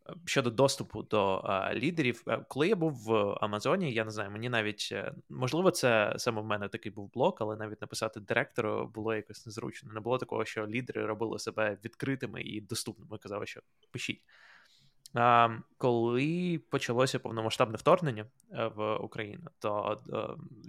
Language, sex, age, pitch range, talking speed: Ukrainian, male, 20-39, 110-135 Hz, 155 wpm